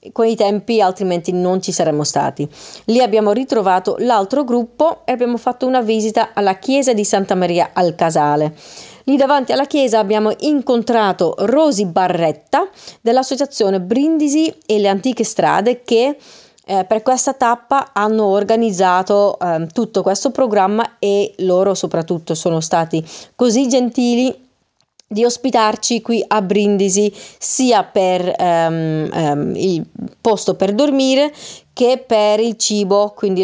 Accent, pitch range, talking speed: native, 185-245 Hz, 135 wpm